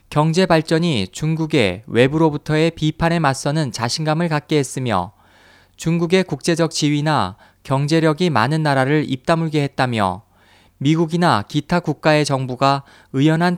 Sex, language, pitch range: male, Korean, 125-165 Hz